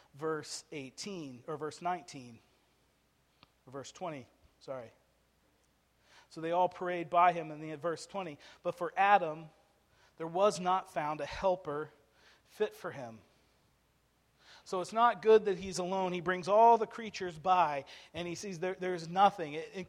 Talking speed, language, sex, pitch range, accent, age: 155 wpm, English, male, 145-185 Hz, American, 40-59